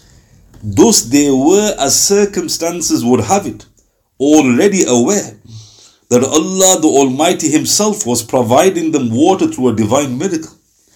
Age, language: 50-69, English